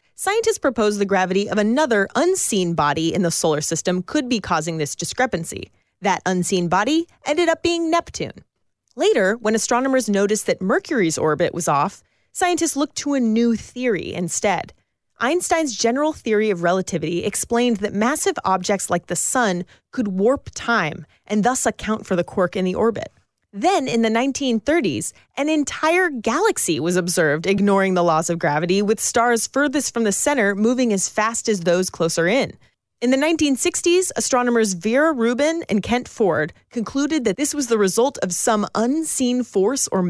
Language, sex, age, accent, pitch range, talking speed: English, female, 30-49, American, 190-280 Hz, 165 wpm